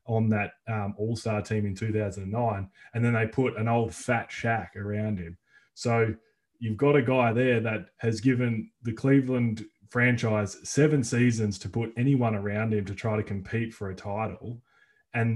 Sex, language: male, English